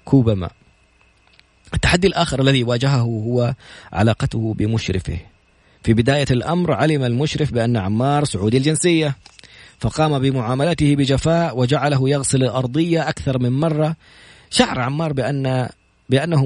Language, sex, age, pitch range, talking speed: Arabic, male, 40-59, 110-140 Hz, 115 wpm